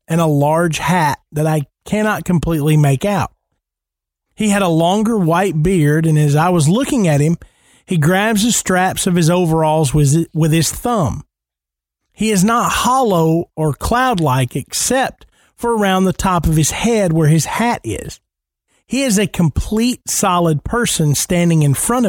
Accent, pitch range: American, 155-220 Hz